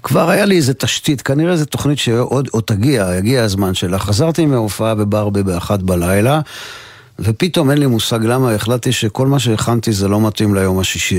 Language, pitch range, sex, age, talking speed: Hebrew, 100-125 Hz, male, 50-69, 170 wpm